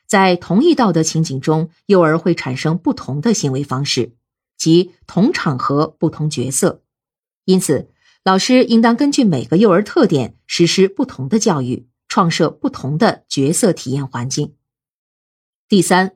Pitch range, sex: 140-215 Hz, female